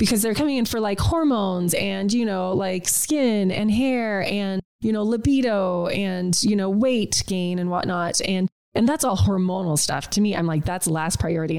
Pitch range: 180-220 Hz